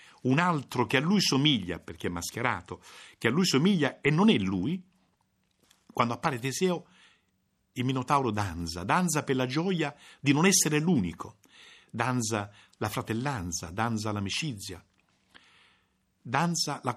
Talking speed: 135 wpm